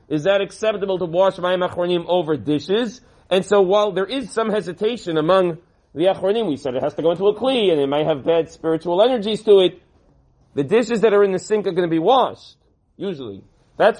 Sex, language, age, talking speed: male, English, 40-59, 220 wpm